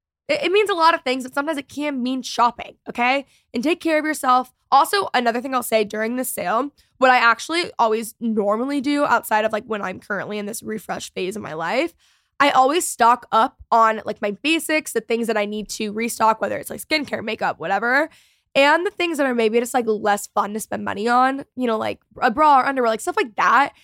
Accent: American